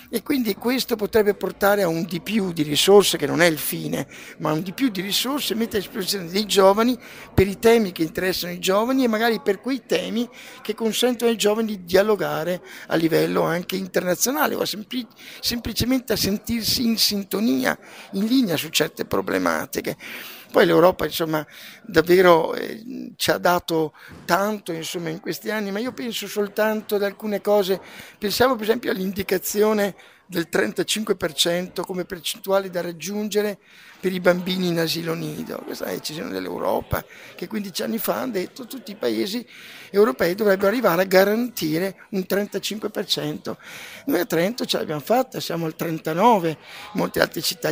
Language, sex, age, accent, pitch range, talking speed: Italian, male, 50-69, native, 175-220 Hz, 170 wpm